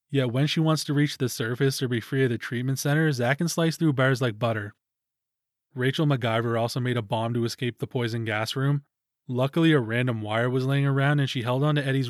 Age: 20-39